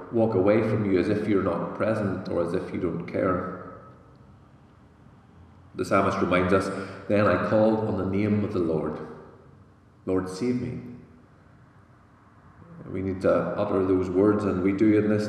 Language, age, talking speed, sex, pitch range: English, 40-59, 165 wpm, male, 90-105 Hz